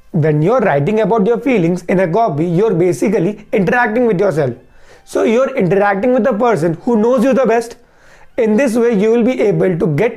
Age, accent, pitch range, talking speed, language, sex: 30-49, native, 175-240 Hz, 200 wpm, Hindi, male